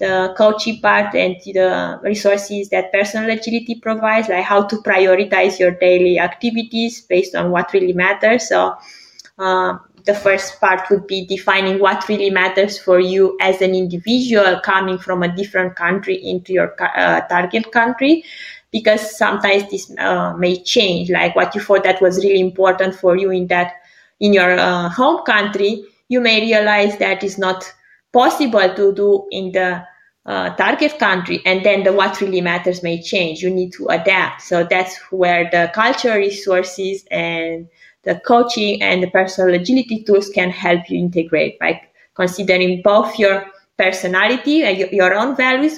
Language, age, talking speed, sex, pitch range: English, 20-39, 165 wpm, female, 185-210 Hz